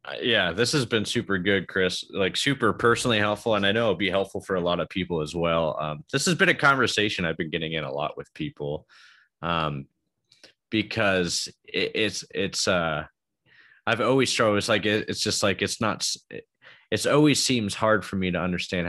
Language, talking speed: English, 205 wpm